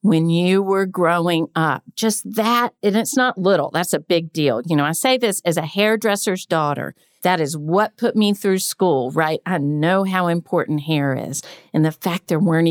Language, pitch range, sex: English, 165-215 Hz, female